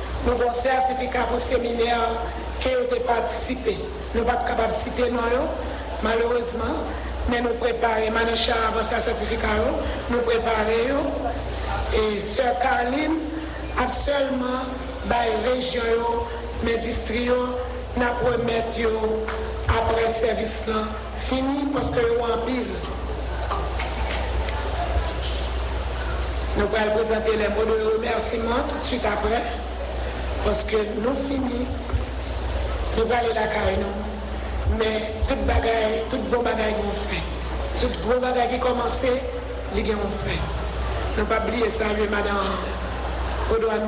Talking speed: 120 wpm